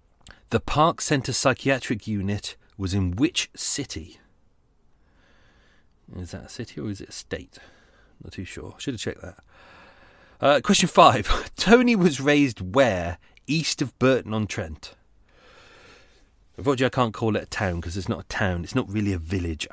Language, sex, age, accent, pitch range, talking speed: English, male, 30-49, British, 95-140 Hz, 160 wpm